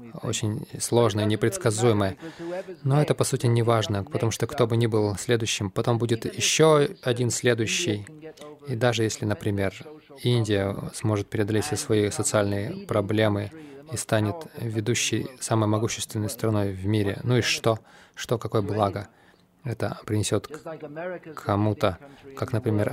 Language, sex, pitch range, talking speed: Russian, male, 105-130 Hz, 135 wpm